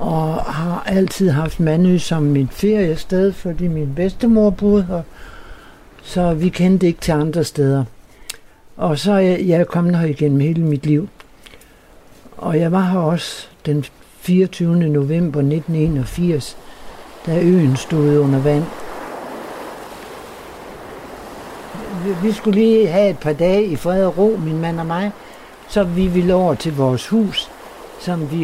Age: 60-79